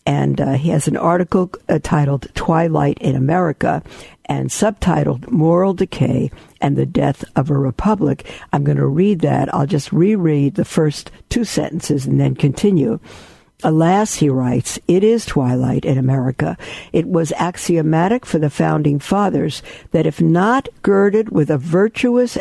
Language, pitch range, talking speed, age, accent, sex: English, 145-185 Hz, 155 wpm, 60-79, American, female